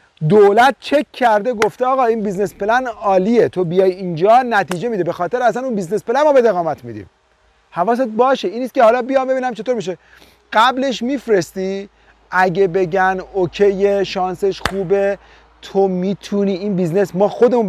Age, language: 40-59, Persian